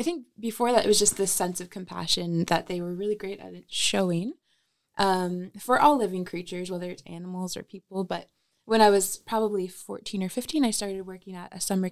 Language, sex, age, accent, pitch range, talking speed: English, female, 20-39, American, 170-205 Hz, 210 wpm